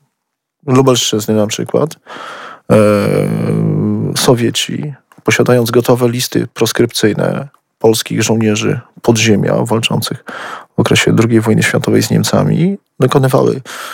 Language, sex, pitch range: Polish, male, 120-145 Hz